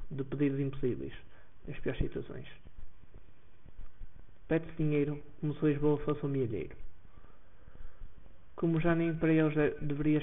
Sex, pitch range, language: male, 95-145 Hz, Portuguese